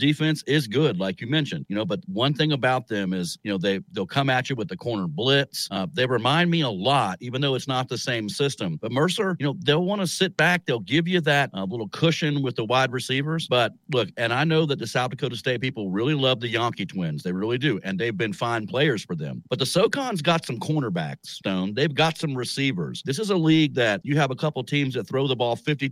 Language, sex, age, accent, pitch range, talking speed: English, male, 50-69, American, 120-155 Hz, 255 wpm